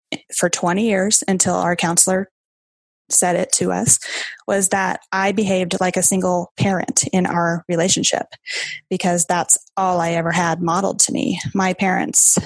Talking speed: 155 wpm